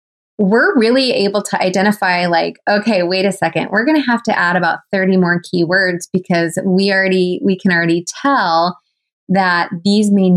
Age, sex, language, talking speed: 20-39, female, English, 175 wpm